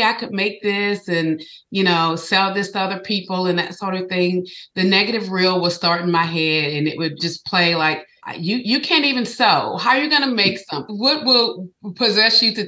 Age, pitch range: 30-49, 165-195 Hz